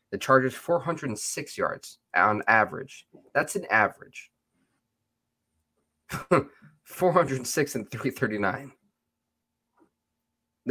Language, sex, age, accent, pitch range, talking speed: English, male, 20-39, American, 105-130 Hz, 65 wpm